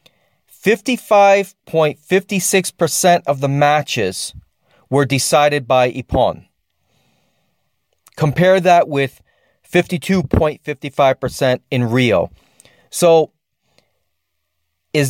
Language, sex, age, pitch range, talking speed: English, male, 40-59, 120-160 Hz, 60 wpm